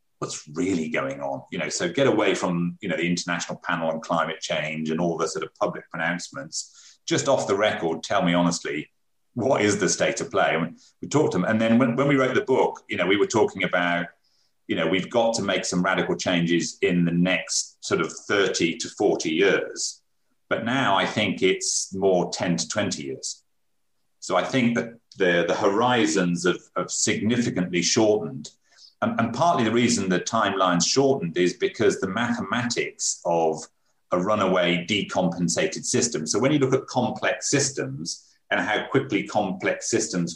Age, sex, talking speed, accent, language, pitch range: 40-59, male, 185 wpm, British, English, 85-115 Hz